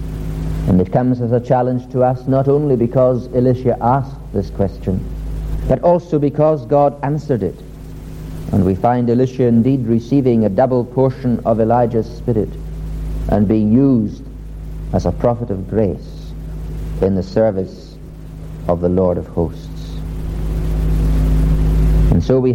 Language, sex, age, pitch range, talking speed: English, male, 60-79, 100-130 Hz, 140 wpm